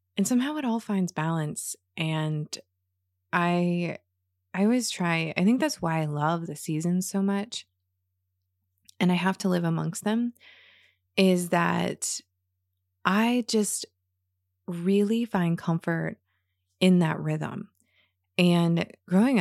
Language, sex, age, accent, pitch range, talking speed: English, female, 20-39, American, 155-190 Hz, 125 wpm